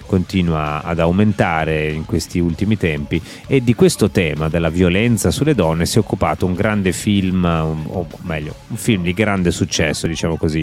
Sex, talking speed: male, 175 wpm